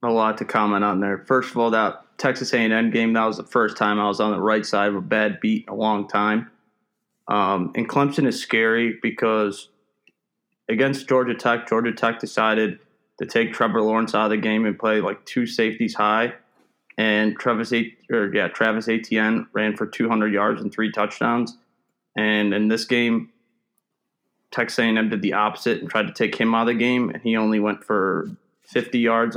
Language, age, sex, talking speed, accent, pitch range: English, 20-39, male, 190 wpm, American, 105-120 Hz